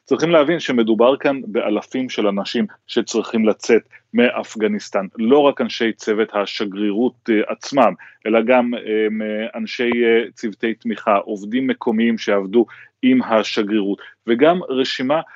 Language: Hebrew